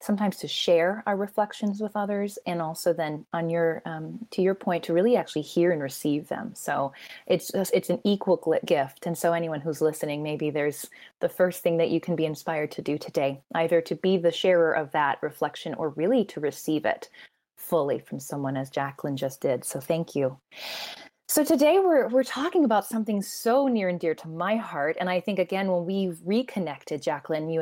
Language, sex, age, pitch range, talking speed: English, female, 20-39, 160-200 Hz, 200 wpm